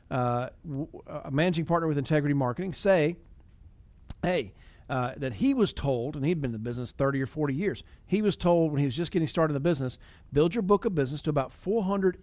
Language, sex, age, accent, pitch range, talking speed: English, male, 40-59, American, 135-185 Hz, 215 wpm